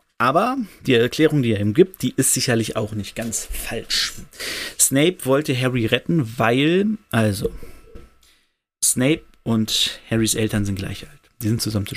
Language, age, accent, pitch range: German, 30-49, German, 105-125 Hz